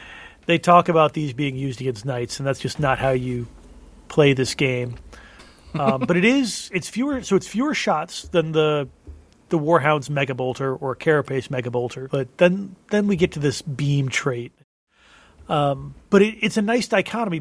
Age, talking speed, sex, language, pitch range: 30-49, 180 wpm, male, English, 135-170 Hz